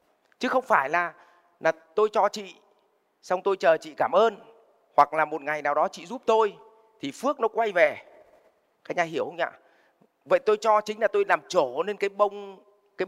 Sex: male